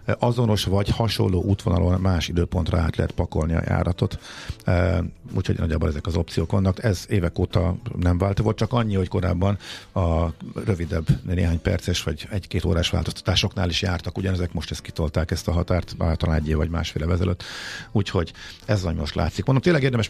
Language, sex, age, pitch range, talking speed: Hungarian, male, 50-69, 90-115 Hz, 170 wpm